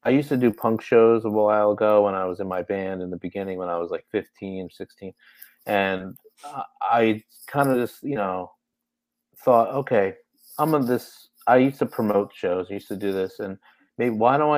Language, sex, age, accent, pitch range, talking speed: English, male, 30-49, American, 95-115 Hz, 210 wpm